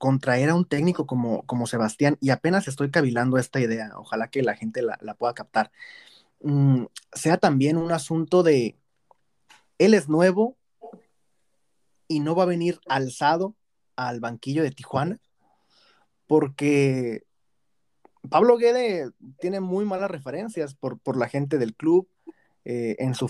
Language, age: Spanish, 30-49